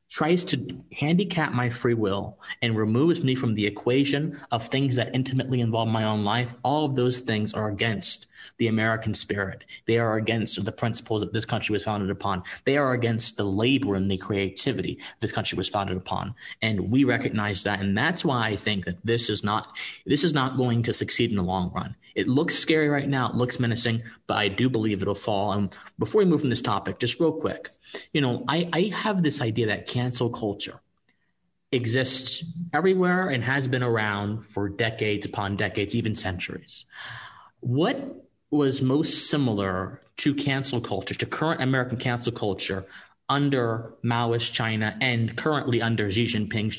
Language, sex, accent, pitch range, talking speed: English, male, American, 105-130 Hz, 180 wpm